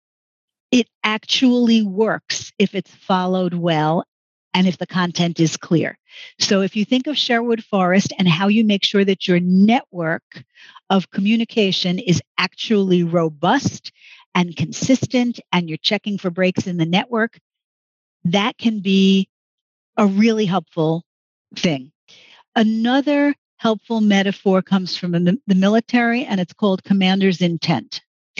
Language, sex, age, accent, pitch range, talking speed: English, female, 50-69, American, 180-230 Hz, 130 wpm